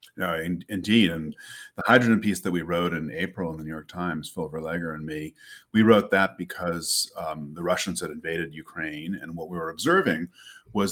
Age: 40-59